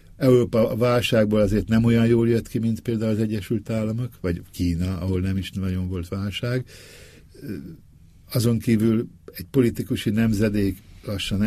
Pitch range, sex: 95-115 Hz, male